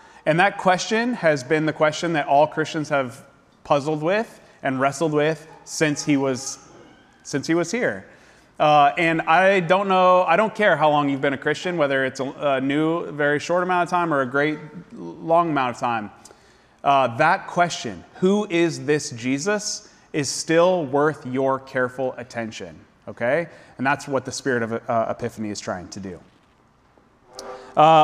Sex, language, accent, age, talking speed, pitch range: male, English, American, 30-49, 175 wpm, 130-170 Hz